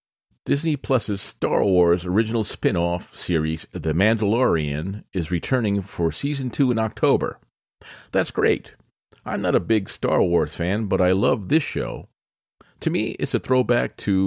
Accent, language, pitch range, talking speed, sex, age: American, English, 85-115 Hz, 150 wpm, male, 40-59